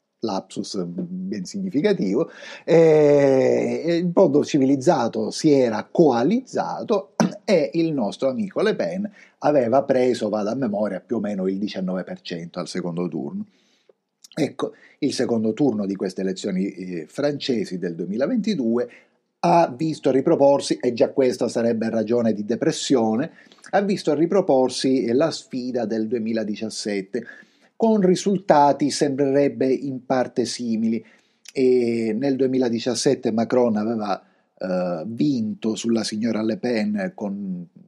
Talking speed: 120 wpm